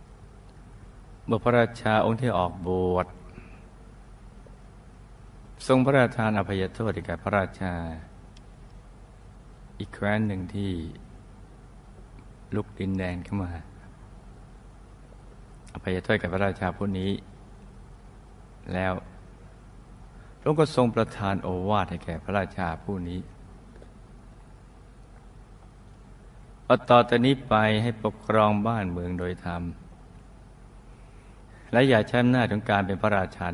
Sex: male